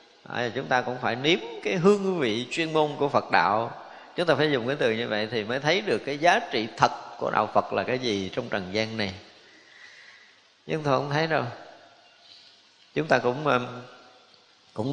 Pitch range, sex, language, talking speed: 110-140 Hz, male, Vietnamese, 195 wpm